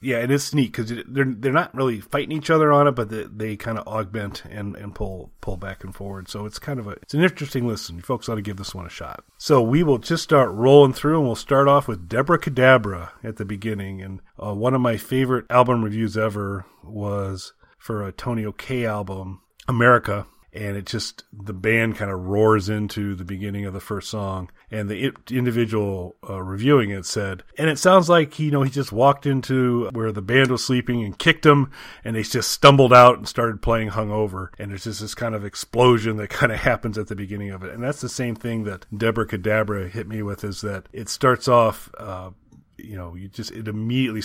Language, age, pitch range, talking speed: English, 30-49, 100-125 Hz, 230 wpm